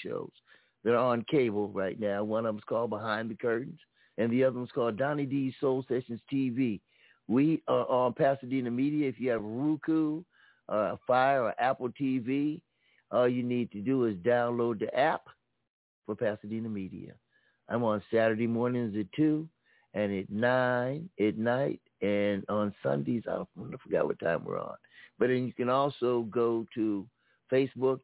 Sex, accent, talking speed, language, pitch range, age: male, American, 170 wpm, English, 110-130 Hz, 60-79